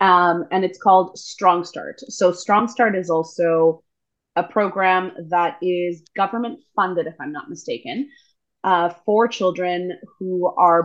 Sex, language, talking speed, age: female, English, 145 wpm, 20-39